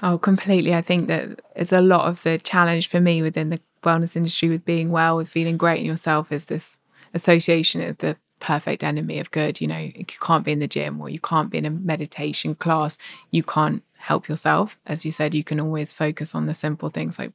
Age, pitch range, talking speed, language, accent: 20-39, 155-175 Hz, 230 wpm, English, British